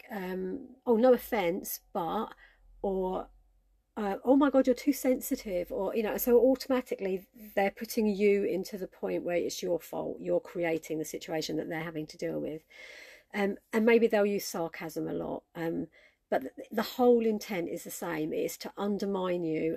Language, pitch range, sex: English, 165-215 Hz, female